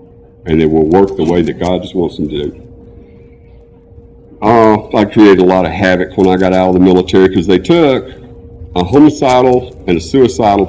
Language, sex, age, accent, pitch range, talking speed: English, male, 50-69, American, 90-110 Hz, 195 wpm